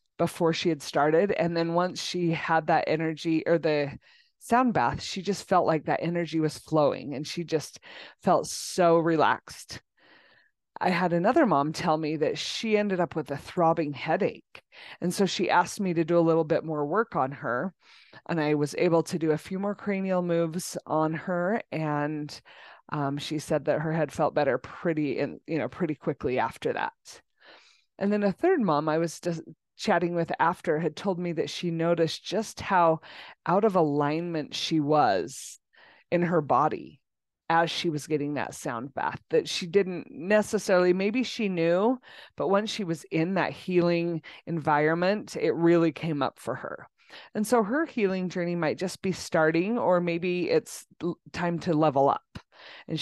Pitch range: 155-180 Hz